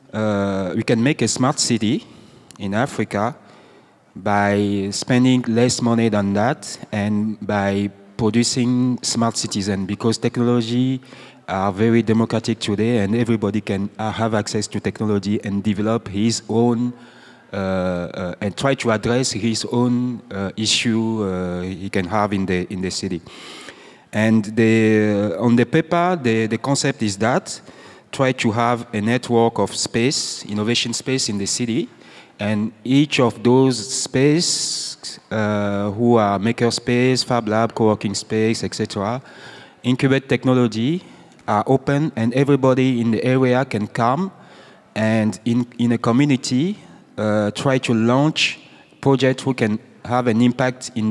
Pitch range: 105-125 Hz